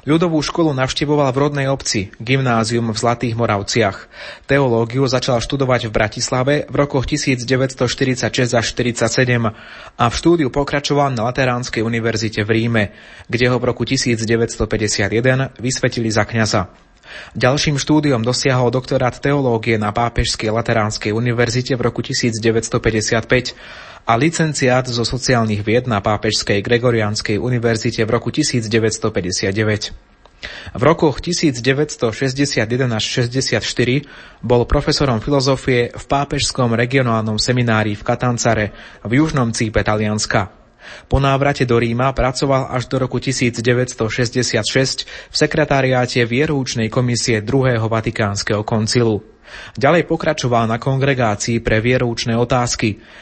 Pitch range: 115-135 Hz